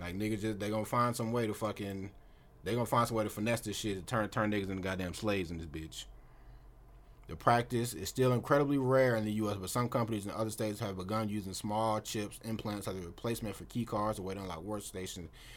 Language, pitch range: English, 100-120 Hz